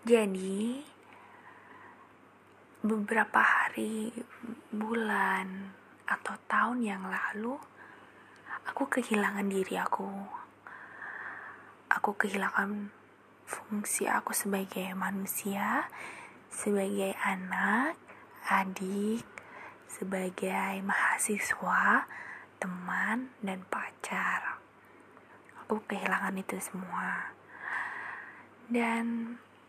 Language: Indonesian